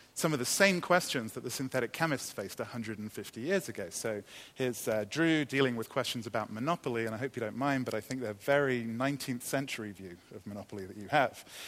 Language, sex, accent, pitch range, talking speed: English, male, British, 115-145 Hz, 210 wpm